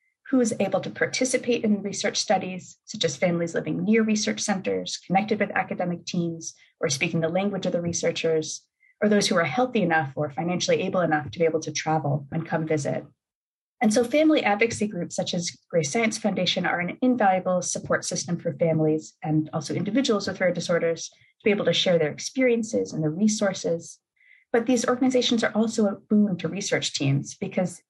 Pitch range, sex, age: 165-215 Hz, female, 30-49